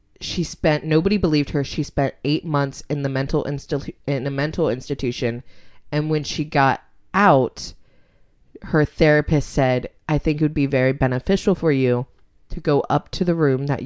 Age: 20-39